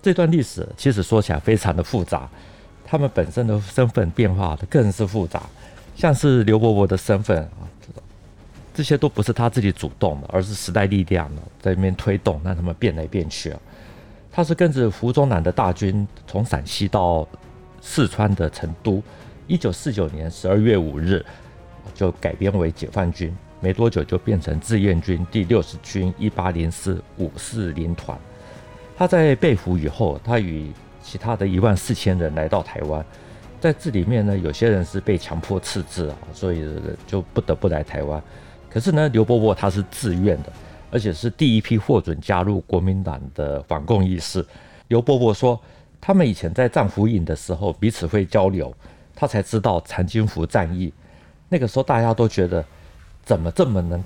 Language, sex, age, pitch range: Chinese, male, 50-69, 85-115 Hz